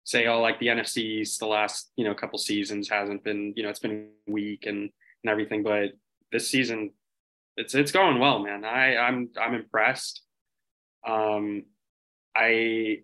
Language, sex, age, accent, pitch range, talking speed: English, male, 20-39, American, 105-125 Hz, 165 wpm